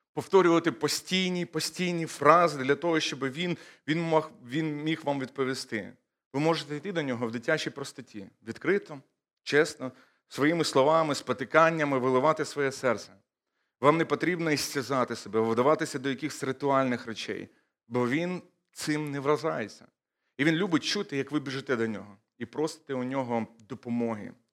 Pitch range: 125-160 Hz